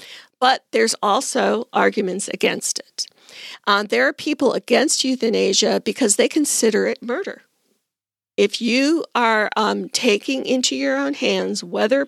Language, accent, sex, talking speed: English, American, female, 140 wpm